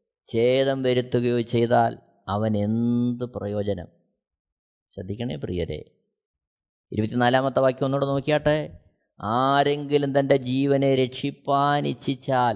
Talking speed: 75 wpm